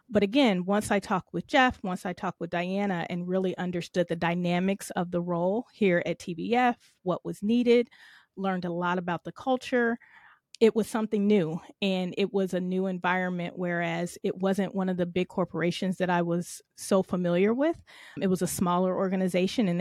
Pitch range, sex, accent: 175-205 Hz, female, American